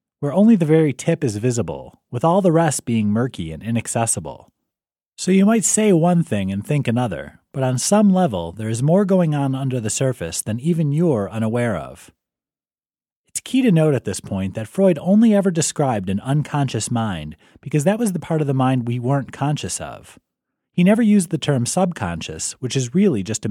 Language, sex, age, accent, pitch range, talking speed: English, male, 30-49, American, 115-165 Hz, 200 wpm